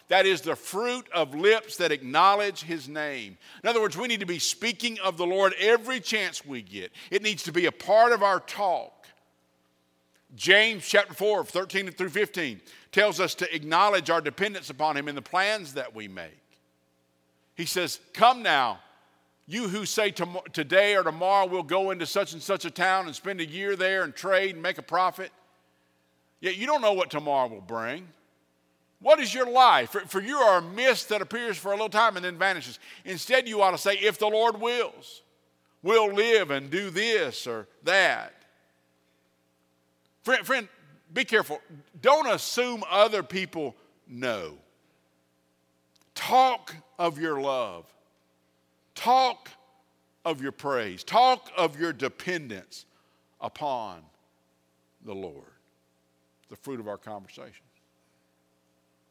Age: 50-69